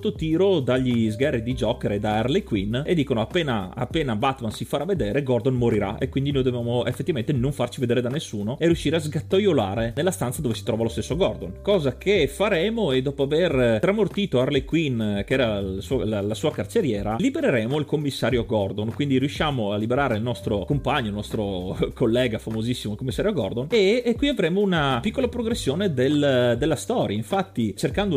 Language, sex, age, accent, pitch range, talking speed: Italian, male, 30-49, native, 120-175 Hz, 185 wpm